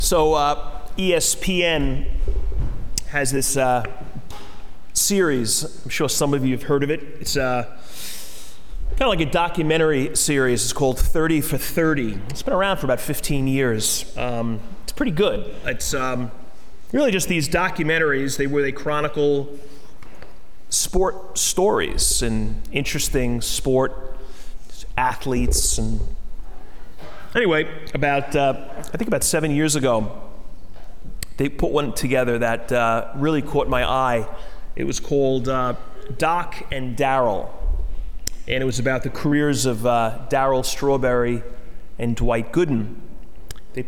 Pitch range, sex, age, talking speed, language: 120-145 Hz, male, 30-49, 135 wpm, English